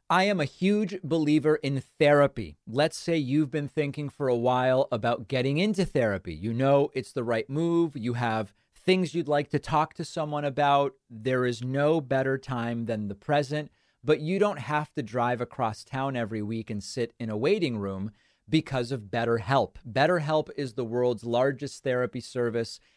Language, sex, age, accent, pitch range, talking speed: English, male, 30-49, American, 120-150 Hz, 180 wpm